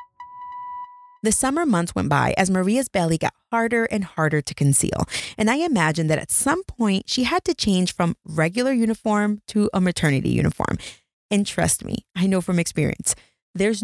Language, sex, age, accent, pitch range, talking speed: English, female, 30-49, American, 155-240 Hz, 175 wpm